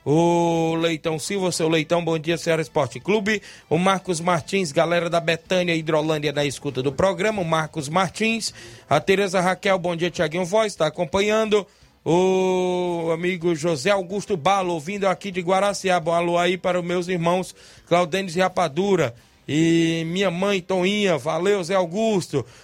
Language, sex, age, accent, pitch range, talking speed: Portuguese, male, 20-39, Brazilian, 155-190 Hz, 155 wpm